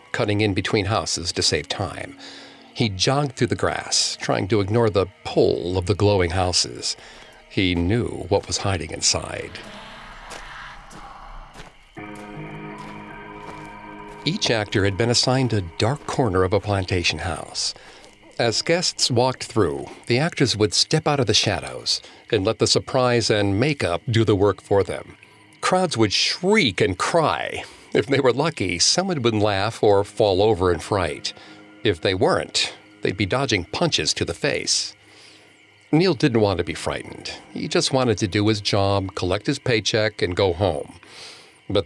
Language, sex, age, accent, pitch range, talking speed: English, male, 50-69, American, 100-130 Hz, 155 wpm